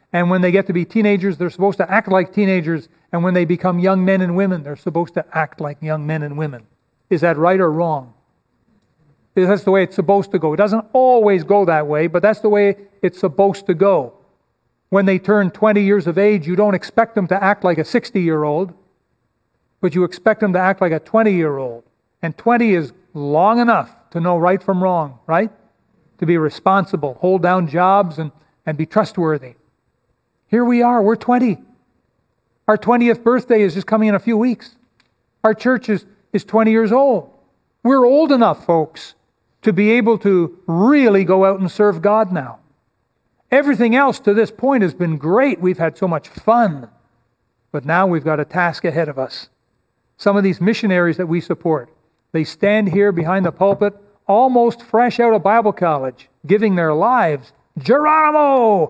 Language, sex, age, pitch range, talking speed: English, male, 40-59, 165-215 Hz, 190 wpm